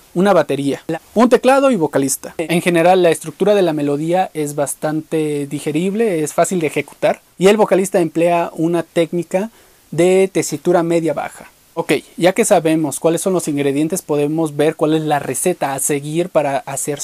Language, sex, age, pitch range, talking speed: Spanish, male, 30-49, 155-190 Hz, 170 wpm